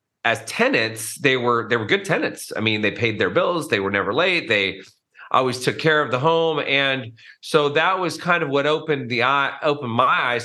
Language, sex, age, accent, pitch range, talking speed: English, male, 30-49, American, 115-145 Hz, 220 wpm